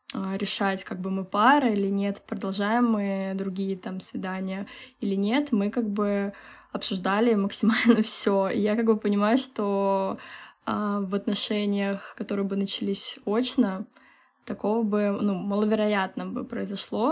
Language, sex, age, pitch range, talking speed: Russian, female, 10-29, 200-230 Hz, 135 wpm